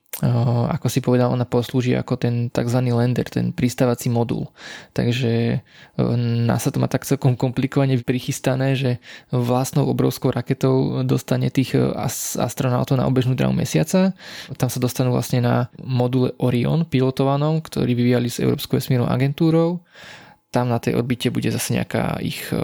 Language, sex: Slovak, male